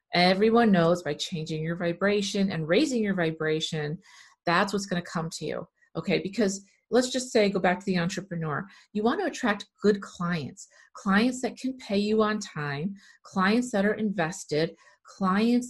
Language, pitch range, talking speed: English, 170-205 Hz, 170 wpm